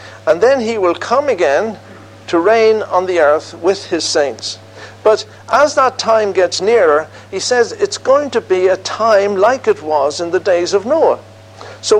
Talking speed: 185 wpm